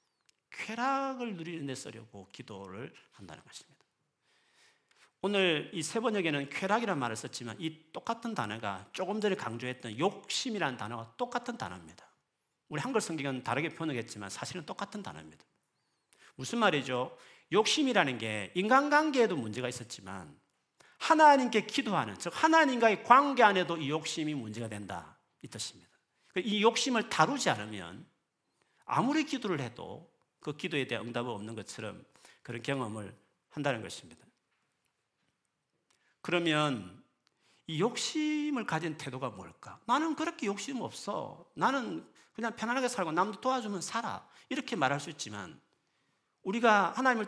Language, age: Korean, 40-59